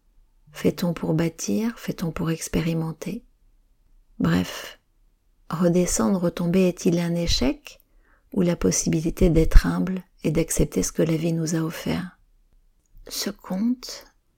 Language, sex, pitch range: French, female, 160-185 Hz